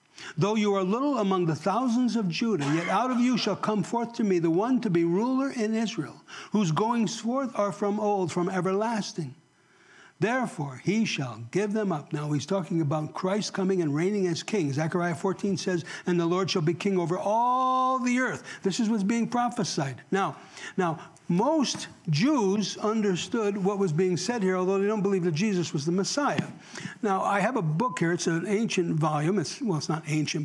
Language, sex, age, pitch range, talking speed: English, male, 60-79, 170-215 Hz, 200 wpm